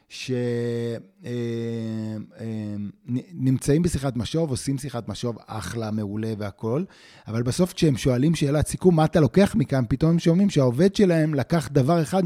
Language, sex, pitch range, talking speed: Hebrew, male, 115-155 Hz, 130 wpm